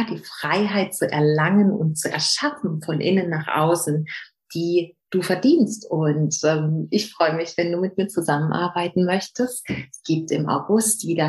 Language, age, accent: German, 40-59, German